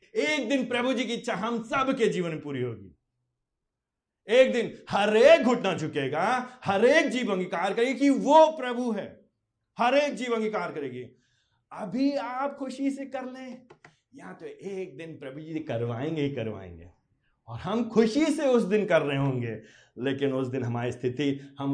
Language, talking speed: Hindi, 145 wpm